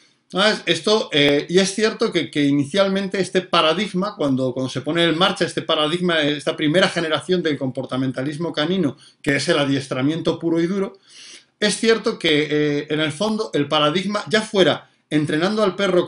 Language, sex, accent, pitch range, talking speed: Spanish, male, Spanish, 145-185 Hz, 165 wpm